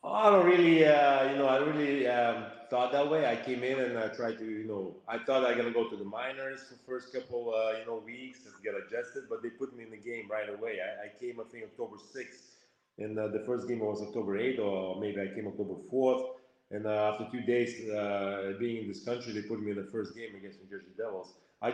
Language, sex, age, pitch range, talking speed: English, male, 30-49, 105-130 Hz, 260 wpm